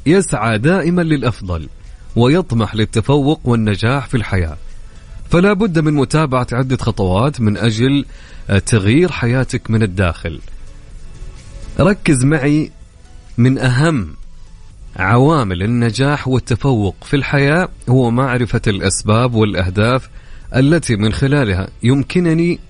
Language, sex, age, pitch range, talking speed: English, male, 30-49, 100-140 Hz, 100 wpm